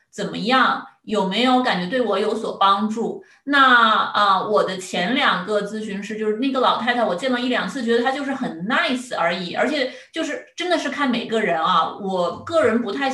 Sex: female